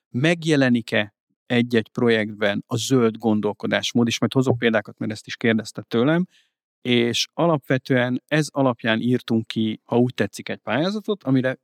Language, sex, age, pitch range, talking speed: Hungarian, male, 50-69, 110-140 Hz, 140 wpm